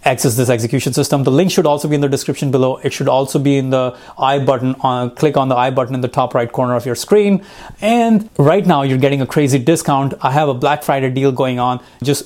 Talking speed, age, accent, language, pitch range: 255 wpm, 30-49, Indian, English, 130-160 Hz